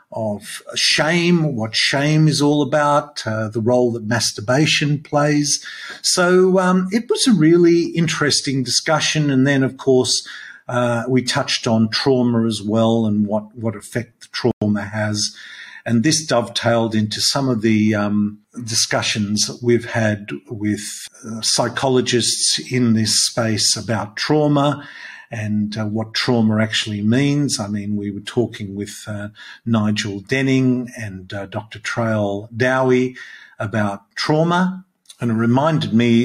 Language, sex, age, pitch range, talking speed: English, male, 50-69, 105-135 Hz, 140 wpm